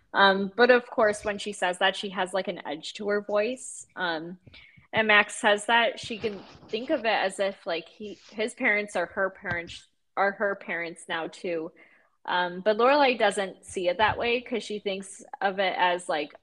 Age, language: 20-39, English